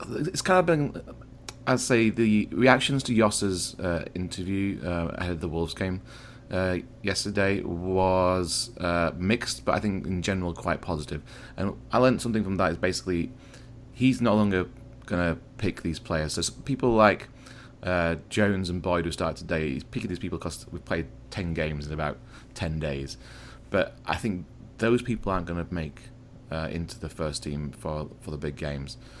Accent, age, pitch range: British, 30-49, 85-120 Hz